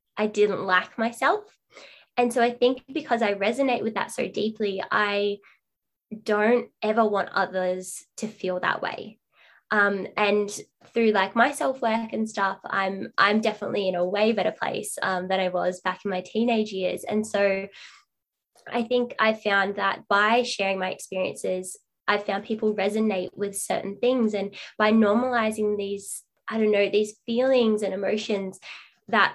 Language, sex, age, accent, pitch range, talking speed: English, female, 10-29, Australian, 190-225 Hz, 160 wpm